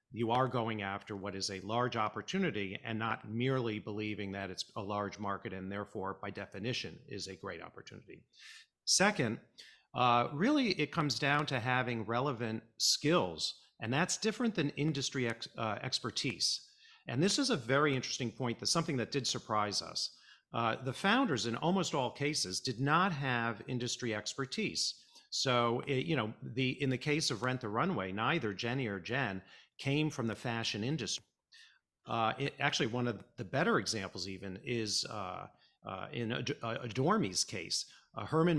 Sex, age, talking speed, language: male, 50-69, 165 wpm, English